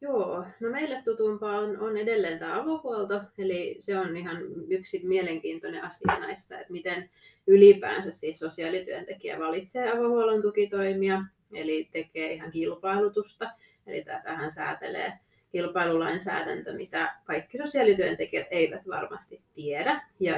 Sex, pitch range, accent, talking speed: female, 175-220 Hz, native, 115 wpm